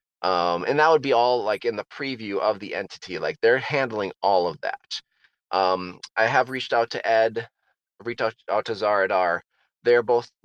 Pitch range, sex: 105-130 Hz, male